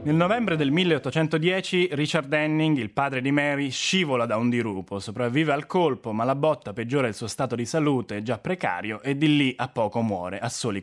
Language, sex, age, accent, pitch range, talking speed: Italian, male, 20-39, native, 110-150 Hz, 200 wpm